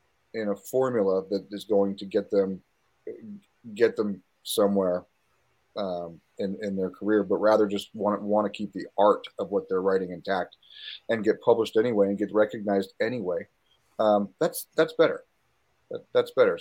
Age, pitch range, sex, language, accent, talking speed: 40-59, 105-145 Hz, male, English, American, 165 wpm